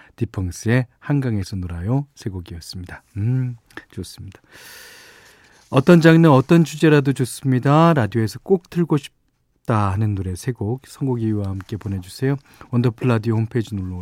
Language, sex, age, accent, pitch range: Korean, male, 40-59, native, 105-150 Hz